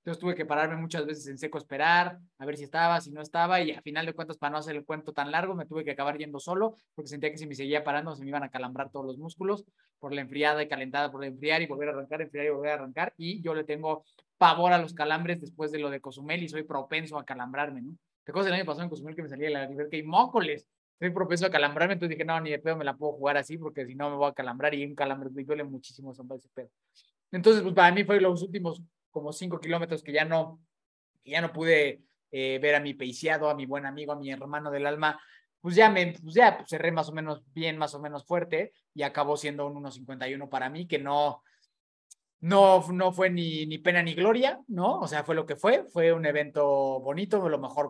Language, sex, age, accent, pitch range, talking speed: Spanish, male, 20-39, Mexican, 145-170 Hz, 255 wpm